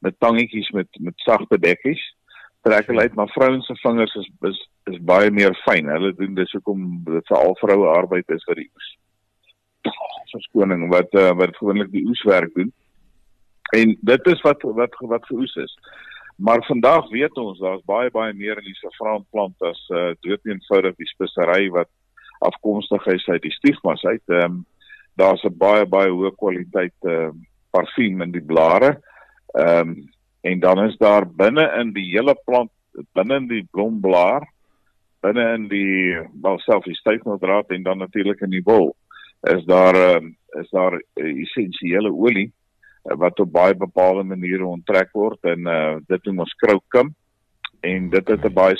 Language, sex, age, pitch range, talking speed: Swedish, male, 50-69, 90-105 Hz, 150 wpm